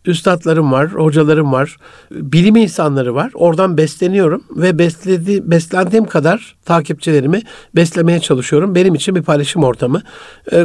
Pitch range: 155-195 Hz